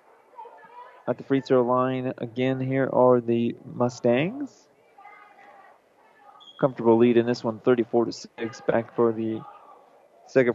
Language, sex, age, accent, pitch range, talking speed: English, male, 20-39, American, 115-135 Hz, 115 wpm